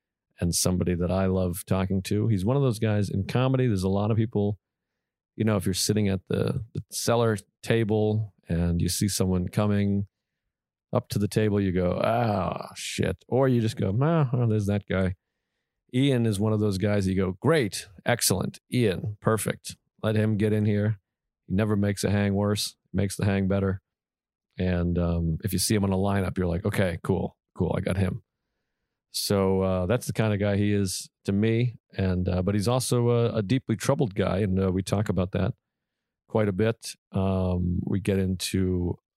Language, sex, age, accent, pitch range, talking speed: English, male, 40-59, American, 95-110 Hz, 195 wpm